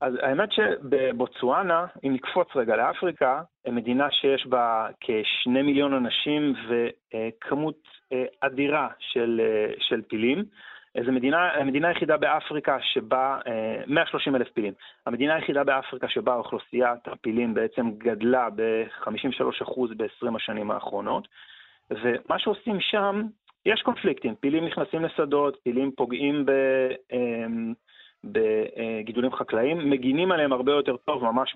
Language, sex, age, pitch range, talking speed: Hebrew, male, 30-49, 120-150 Hz, 110 wpm